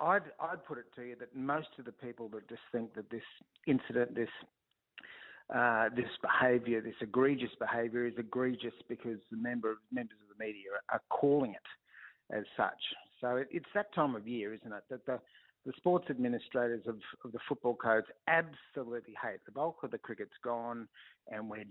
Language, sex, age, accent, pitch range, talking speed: English, male, 50-69, Australian, 115-130 Hz, 185 wpm